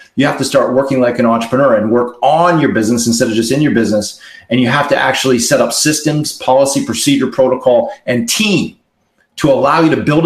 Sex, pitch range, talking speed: male, 120-150 Hz, 215 wpm